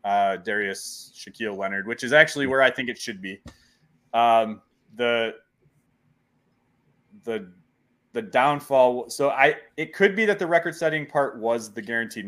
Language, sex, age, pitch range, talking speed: English, male, 20-39, 105-135 Hz, 150 wpm